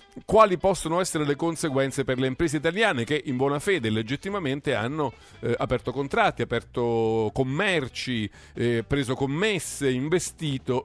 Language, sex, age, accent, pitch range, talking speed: Italian, male, 40-59, native, 110-145 Hz, 135 wpm